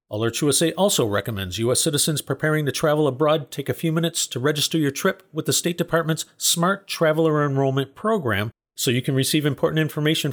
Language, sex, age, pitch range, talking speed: English, male, 40-59, 135-170 Hz, 185 wpm